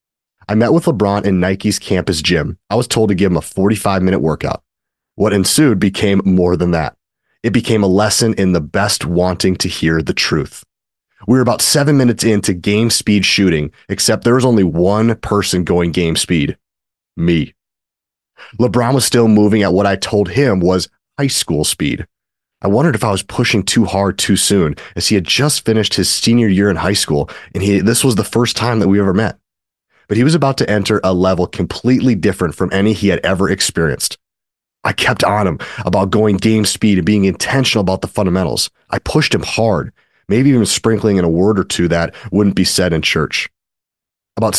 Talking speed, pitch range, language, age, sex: 200 wpm, 95-115 Hz, English, 30-49, male